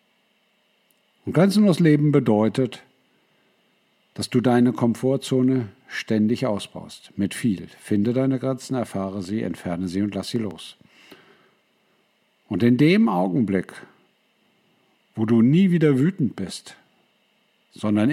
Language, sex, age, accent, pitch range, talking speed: German, male, 50-69, German, 105-170 Hz, 115 wpm